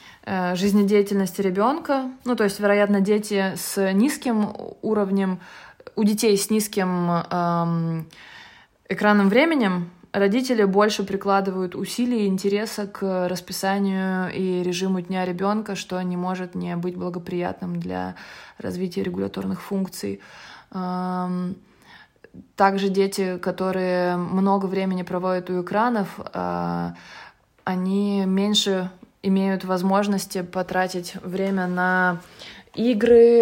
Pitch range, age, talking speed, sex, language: 185-210 Hz, 20-39, 100 wpm, female, Russian